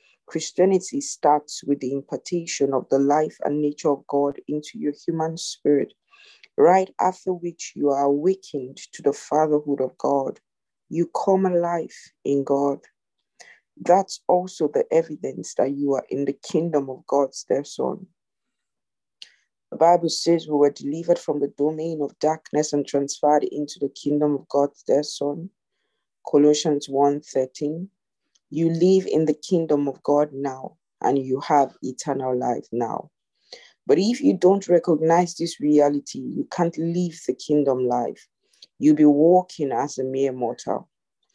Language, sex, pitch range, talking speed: English, female, 140-175 Hz, 150 wpm